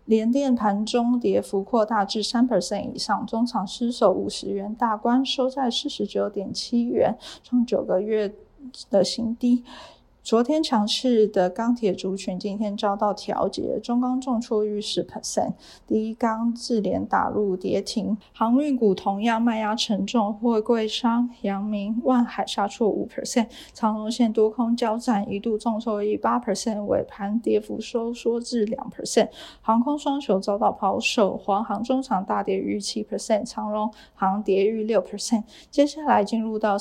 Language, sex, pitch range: Chinese, female, 200-235 Hz